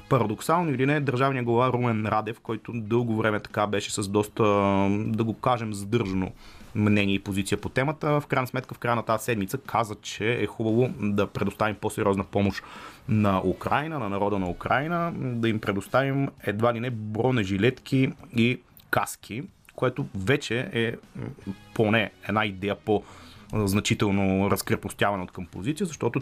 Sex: male